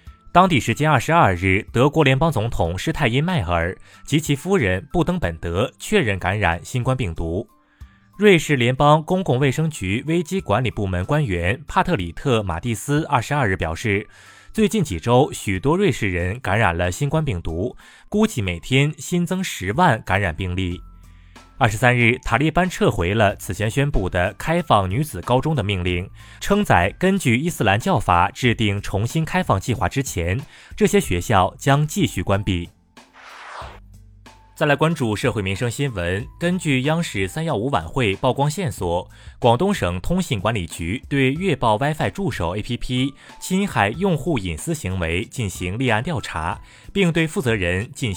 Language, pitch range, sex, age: Chinese, 95-150 Hz, male, 20-39